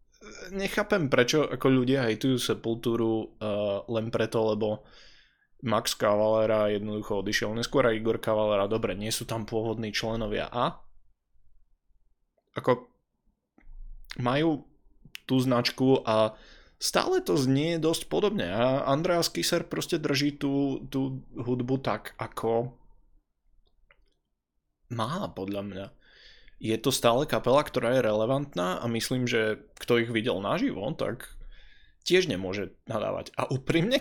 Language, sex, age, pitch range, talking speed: Slovak, male, 20-39, 110-135 Hz, 120 wpm